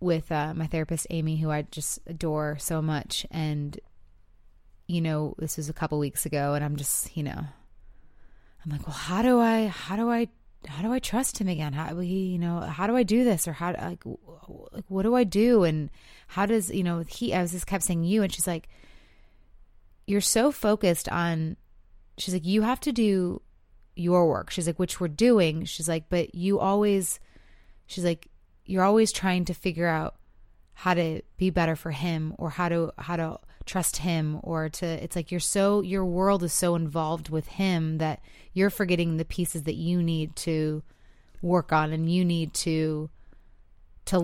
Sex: female